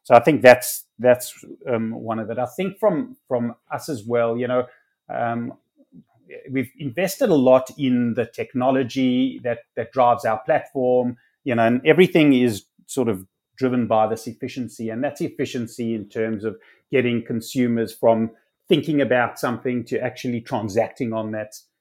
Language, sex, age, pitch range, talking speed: English, male, 30-49, 115-140 Hz, 160 wpm